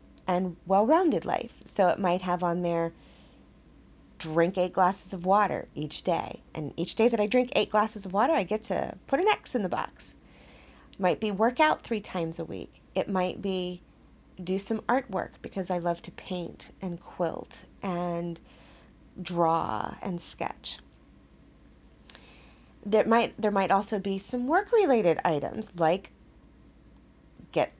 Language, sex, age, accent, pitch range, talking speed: English, female, 30-49, American, 165-210 Hz, 155 wpm